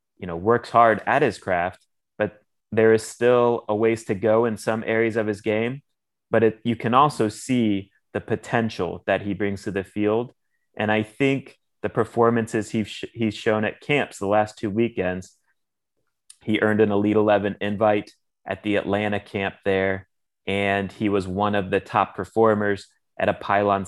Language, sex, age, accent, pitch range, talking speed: English, male, 30-49, American, 95-110 Hz, 175 wpm